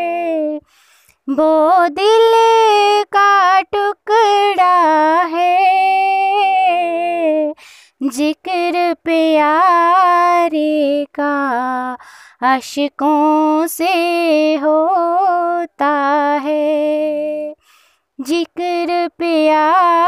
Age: 20-39